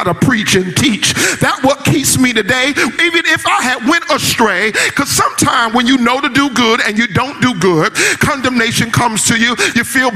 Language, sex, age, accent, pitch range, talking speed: English, male, 40-59, American, 240-290 Hz, 200 wpm